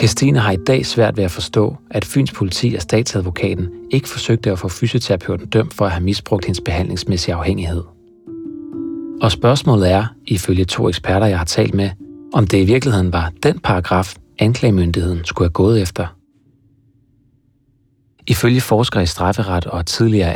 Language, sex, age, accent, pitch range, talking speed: Danish, male, 30-49, native, 90-115 Hz, 160 wpm